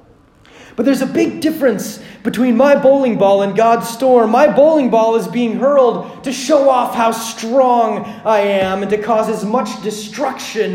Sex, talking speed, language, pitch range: male, 175 wpm, English, 170-240 Hz